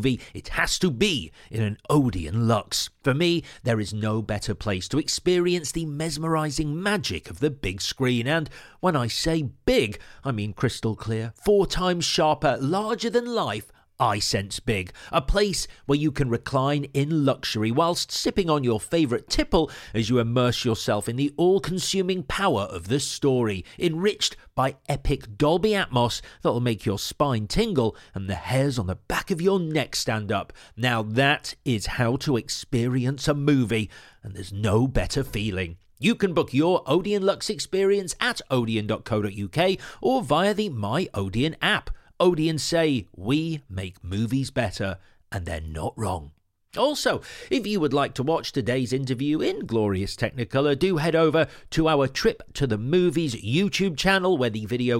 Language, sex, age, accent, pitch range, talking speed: English, male, 40-59, British, 110-165 Hz, 165 wpm